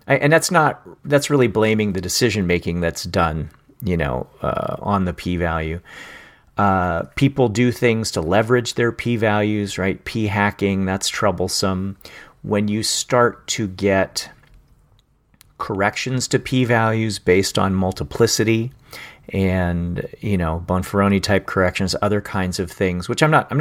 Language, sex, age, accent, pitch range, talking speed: English, male, 40-59, American, 90-115 Hz, 125 wpm